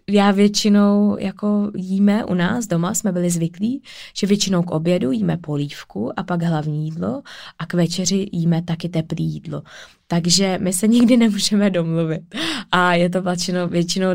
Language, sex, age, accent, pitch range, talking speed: Czech, female, 20-39, native, 170-195 Hz, 155 wpm